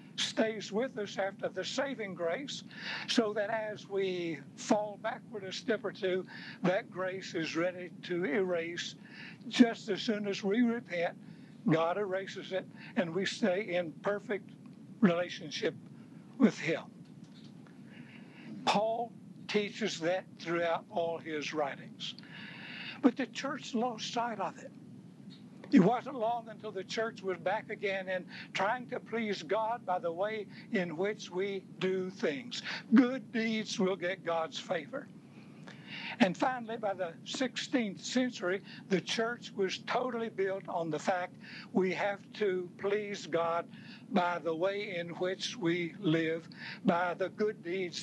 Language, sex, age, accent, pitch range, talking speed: English, male, 60-79, American, 180-220 Hz, 140 wpm